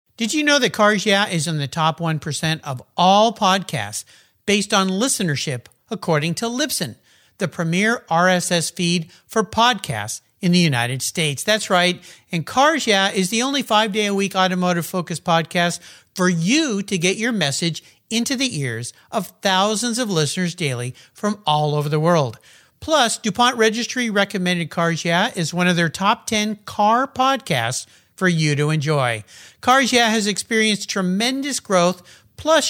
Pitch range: 165-225 Hz